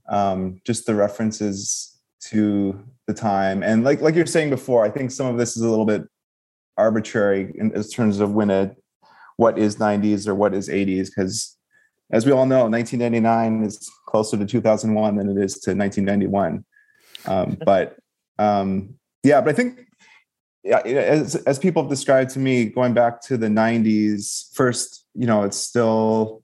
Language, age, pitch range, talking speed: English, 30-49, 105-120 Hz, 175 wpm